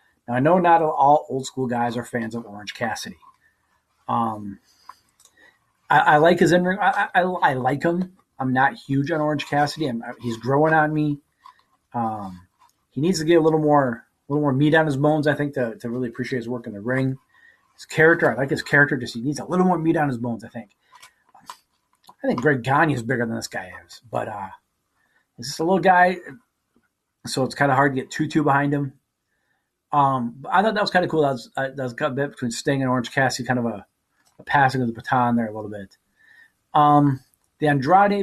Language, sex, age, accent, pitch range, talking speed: English, male, 30-49, American, 125-165 Hz, 225 wpm